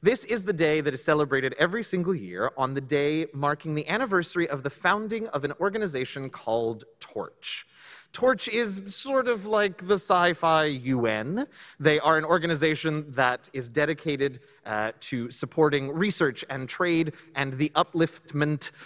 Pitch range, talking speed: 135-195 Hz, 155 wpm